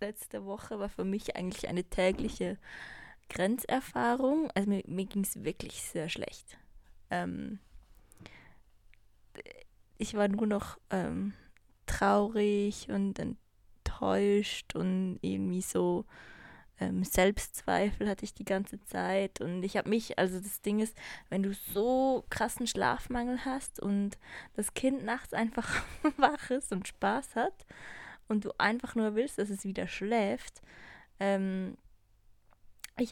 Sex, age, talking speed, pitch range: female, 20-39, 125 wpm, 185-220 Hz